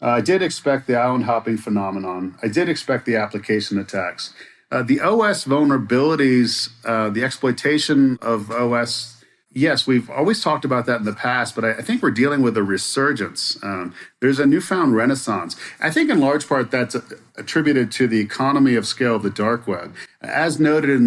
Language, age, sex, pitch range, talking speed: English, 40-59, male, 115-140 Hz, 185 wpm